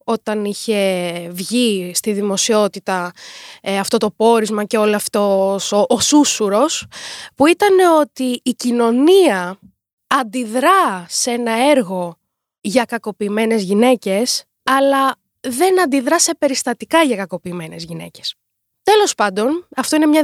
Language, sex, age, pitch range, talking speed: Greek, female, 20-39, 205-285 Hz, 115 wpm